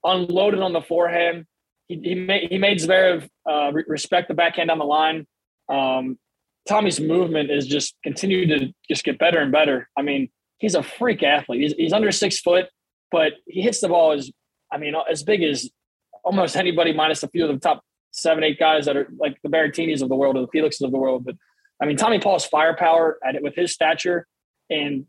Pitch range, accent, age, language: 150-175 Hz, American, 20-39, English